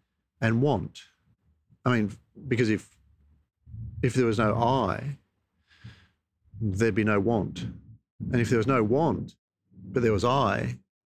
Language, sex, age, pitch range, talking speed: English, male, 40-59, 100-125 Hz, 135 wpm